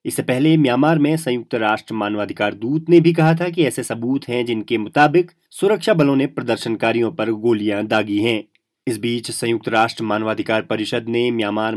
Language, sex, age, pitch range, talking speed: Hindi, male, 30-49, 110-150 Hz, 175 wpm